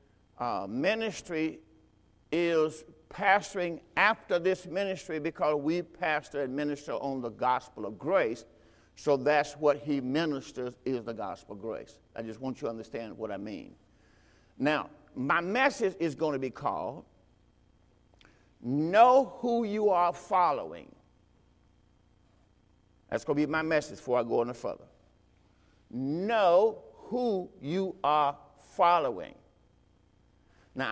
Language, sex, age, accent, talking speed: English, male, 50-69, American, 130 wpm